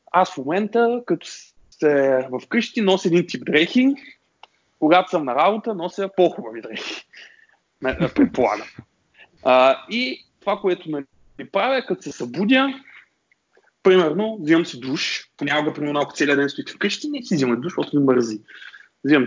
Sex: male